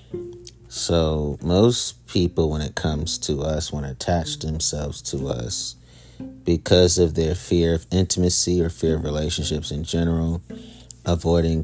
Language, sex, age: English, male, 30-49